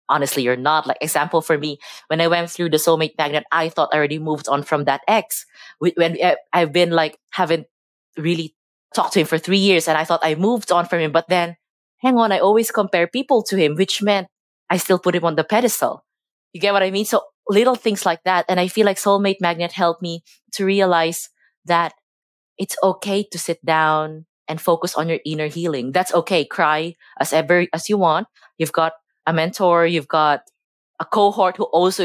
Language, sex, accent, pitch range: English, female, Filipino, 155-185 Hz